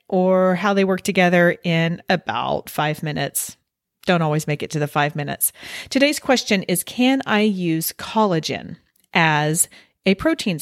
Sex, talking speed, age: female, 155 wpm, 40-59